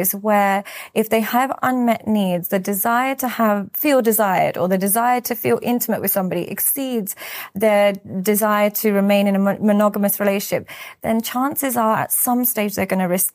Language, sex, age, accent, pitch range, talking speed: English, female, 30-49, British, 200-245 Hz, 175 wpm